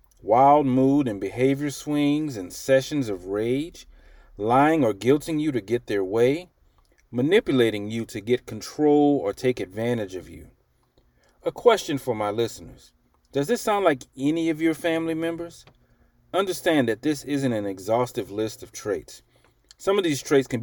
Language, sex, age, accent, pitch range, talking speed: English, male, 40-59, American, 100-135 Hz, 160 wpm